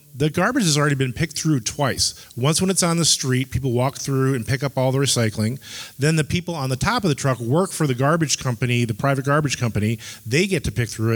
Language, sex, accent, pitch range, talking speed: English, male, American, 120-150 Hz, 245 wpm